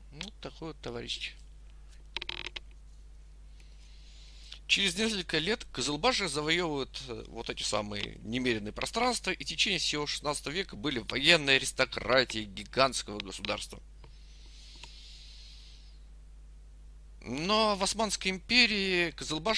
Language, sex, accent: Russian, male, native